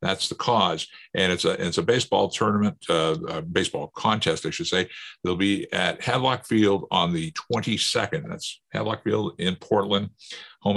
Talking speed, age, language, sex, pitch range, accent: 180 wpm, 50-69, English, male, 90-110 Hz, American